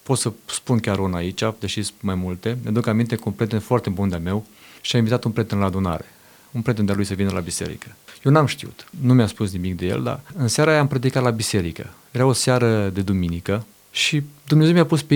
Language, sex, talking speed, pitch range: Romanian, male, 240 wpm, 105-130 Hz